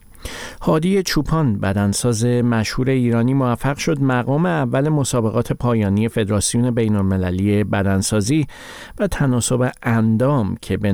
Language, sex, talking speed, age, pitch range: Persian, male, 105 wpm, 50-69, 100-130 Hz